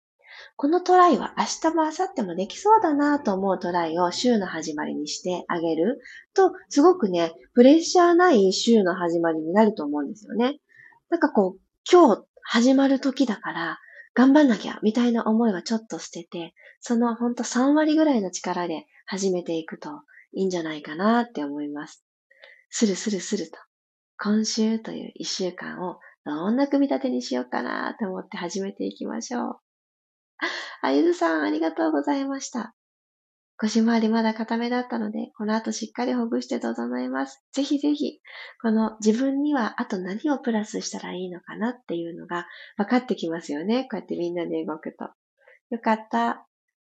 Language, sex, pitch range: Japanese, female, 180-275 Hz